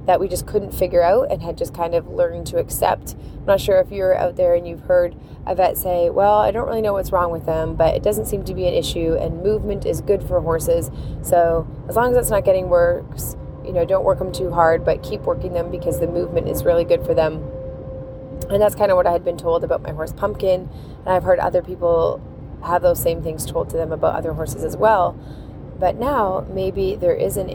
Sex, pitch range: female, 170-205 Hz